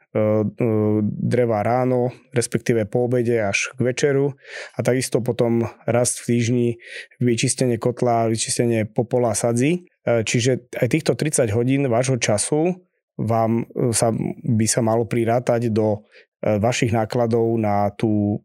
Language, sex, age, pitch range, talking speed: Slovak, male, 20-39, 115-140 Hz, 120 wpm